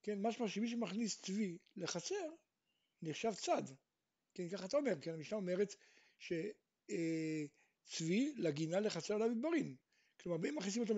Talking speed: 140 wpm